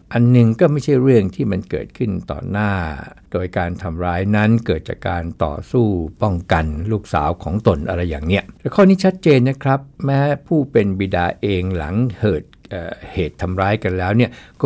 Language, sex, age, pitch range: Thai, male, 60-79, 90-120 Hz